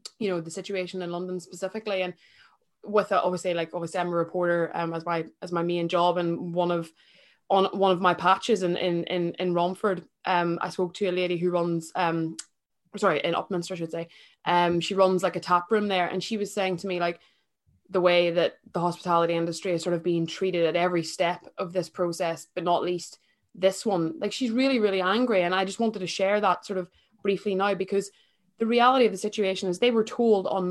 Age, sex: 20-39, female